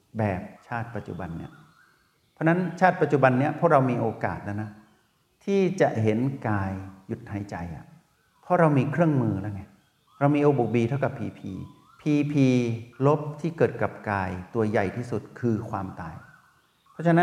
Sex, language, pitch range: male, Thai, 105-140 Hz